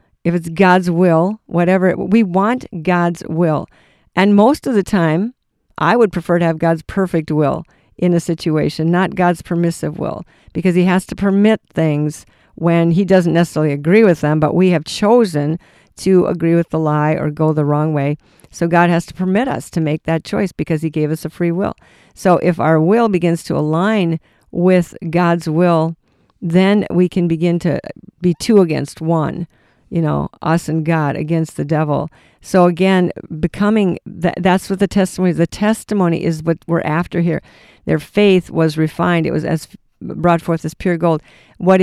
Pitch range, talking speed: 160-185 Hz, 185 wpm